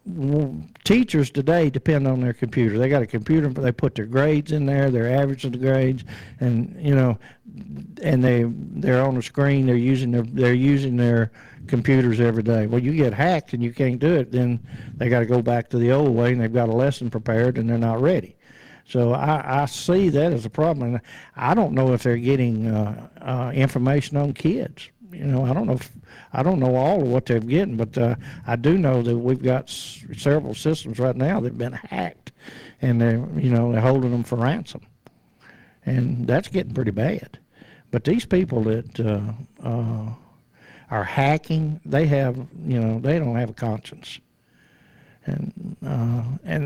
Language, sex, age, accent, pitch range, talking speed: English, male, 60-79, American, 120-140 Hz, 195 wpm